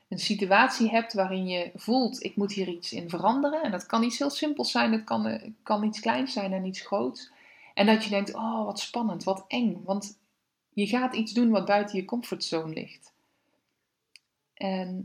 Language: Dutch